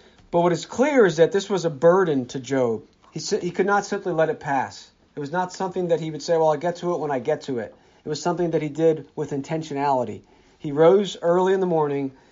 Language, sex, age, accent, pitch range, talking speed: English, male, 40-59, American, 150-190 Hz, 250 wpm